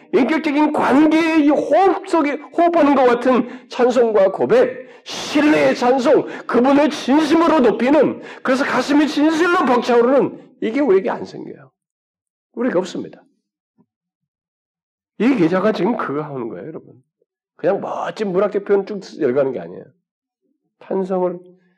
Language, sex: Korean, male